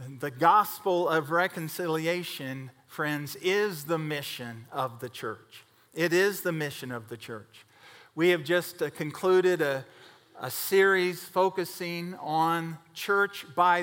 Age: 50-69